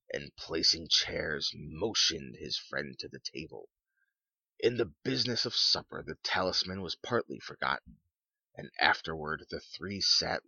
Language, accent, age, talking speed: English, American, 30-49, 135 wpm